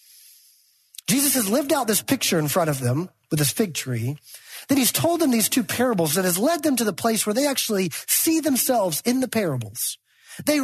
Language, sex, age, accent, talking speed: English, male, 40-59, American, 210 wpm